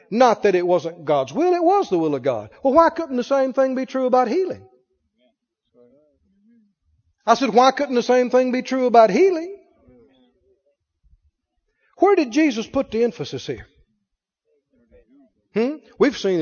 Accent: American